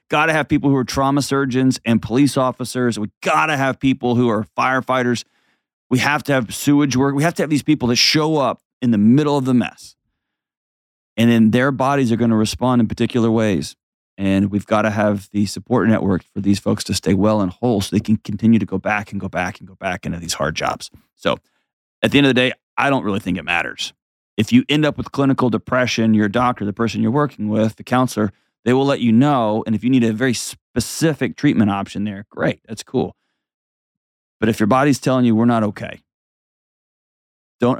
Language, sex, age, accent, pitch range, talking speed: English, male, 30-49, American, 105-130 Hz, 225 wpm